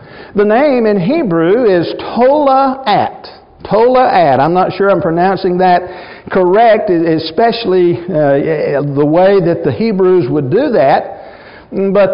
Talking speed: 120 wpm